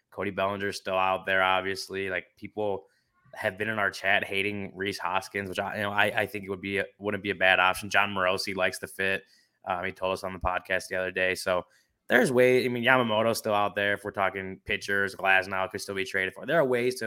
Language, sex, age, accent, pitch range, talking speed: English, male, 20-39, American, 95-115 Hz, 245 wpm